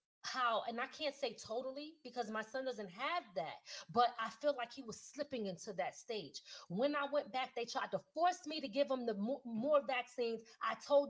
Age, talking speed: 30-49, 210 wpm